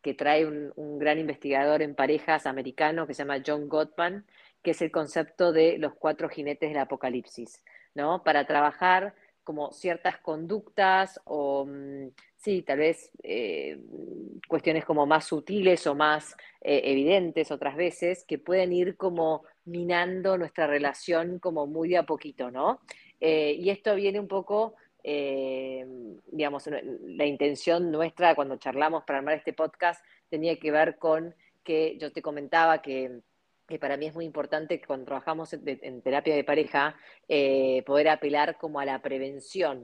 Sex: female